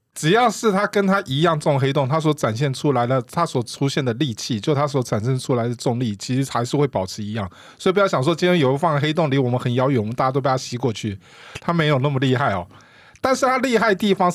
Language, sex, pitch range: Chinese, male, 125-190 Hz